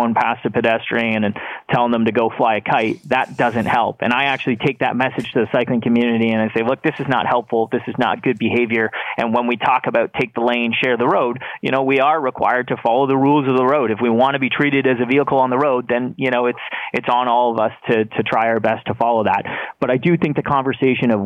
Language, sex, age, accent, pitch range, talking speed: English, male, 30-49, American, 110-130 Hz, 270 wpm